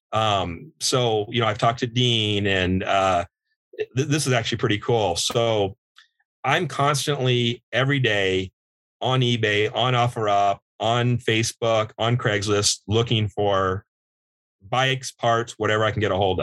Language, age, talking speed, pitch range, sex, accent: English, 40-59, 140 wpm, 105-125 Hz, male, American